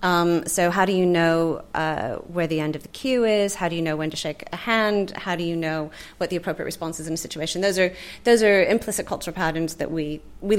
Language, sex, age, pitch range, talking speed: English, female, 30-49, 165-190 Hz, 255 wpm